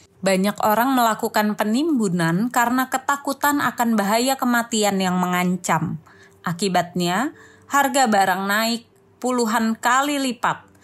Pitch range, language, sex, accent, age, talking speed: 195-255 Hz, Indonesian, female, native, 20-39, 100 wpm